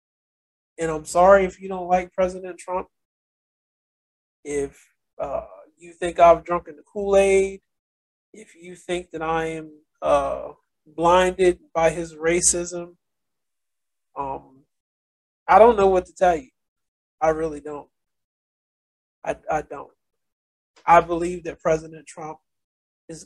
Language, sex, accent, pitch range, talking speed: English, male, American, 155-185 Hz, 125 wpm